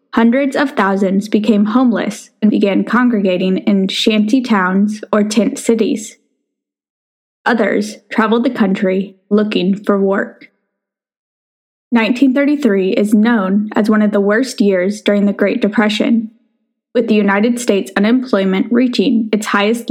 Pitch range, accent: 205-240 Hz, American